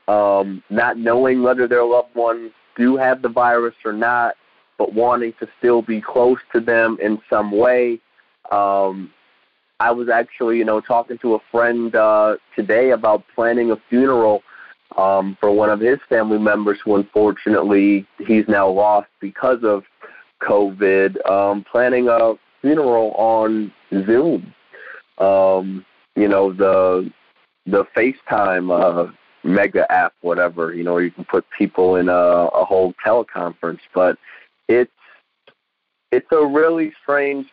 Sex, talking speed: male, 140 wpm